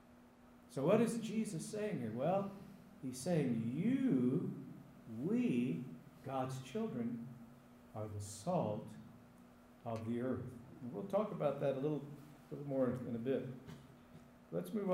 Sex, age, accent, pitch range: male, 50-69, American, 120-155 Hz